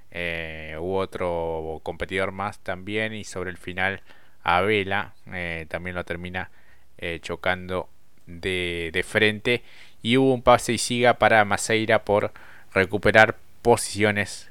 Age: 20-39